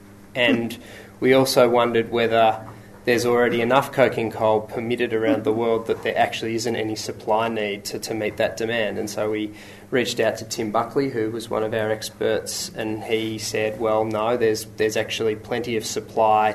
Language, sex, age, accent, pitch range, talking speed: English, male, 20-39, Australian, 105-115 Hz, 185 wpm